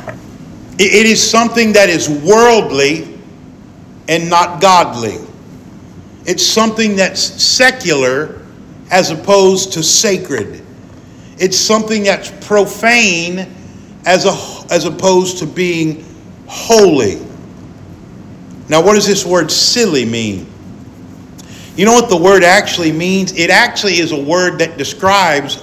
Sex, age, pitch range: male, 50-69, 165-205 Hz